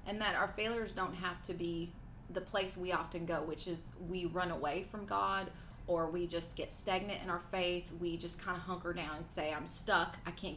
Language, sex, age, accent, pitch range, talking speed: English, female, 30-49, American, 170-200 Hz, 225 wpm